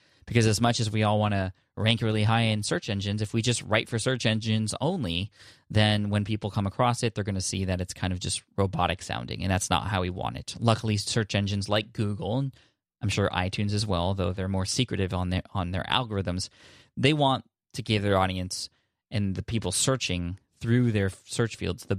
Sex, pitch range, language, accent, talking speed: male, 95-115 Hz, English, American, 220 wpm